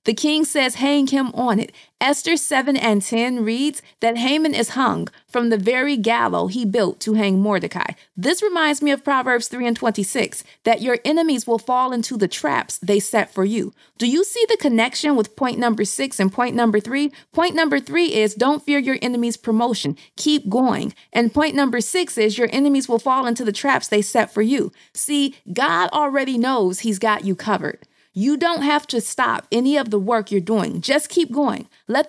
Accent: American